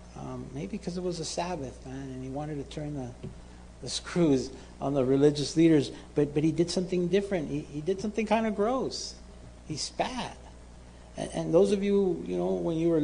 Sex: male